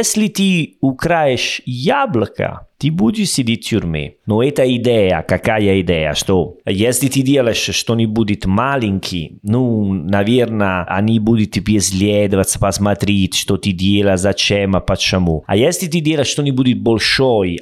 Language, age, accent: Russian, 30-49, Italian